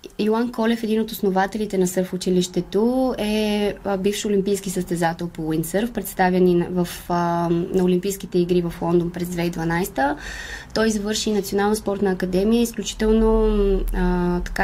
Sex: female